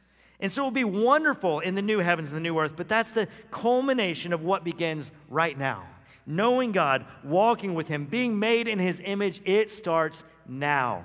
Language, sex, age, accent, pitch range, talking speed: English, male, 50-69, American, 150-205 Hz, 190 wpm